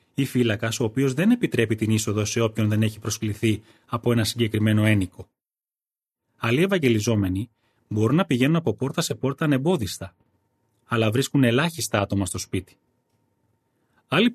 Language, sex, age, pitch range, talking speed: Greek, male, 30-49, 110-135 Hz, 140 wpm